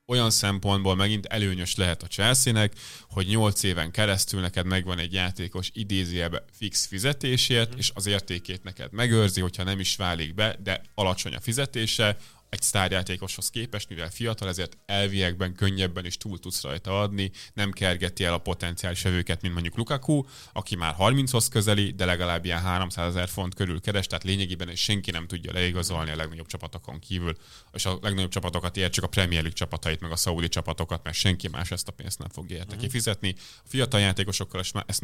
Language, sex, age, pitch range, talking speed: Hungarian, male, 20-39, 90-105 Hz, 175 wpm